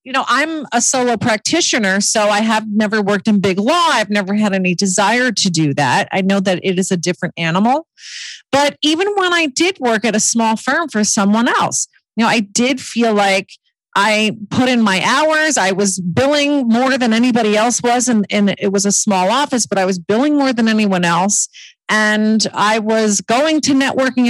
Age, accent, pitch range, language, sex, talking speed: 40-59, American, 195-260 Hz, English, female, 205 wpm